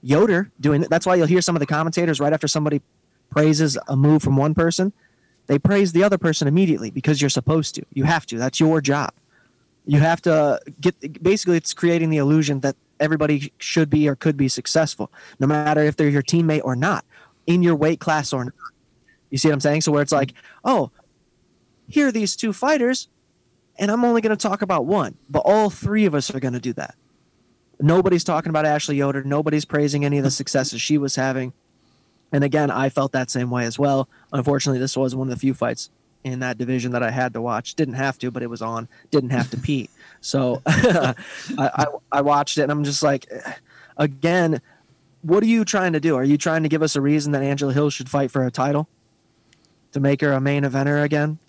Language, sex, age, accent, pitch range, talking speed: English, male, 20-39, American, 135-160 Hz, 220 wpm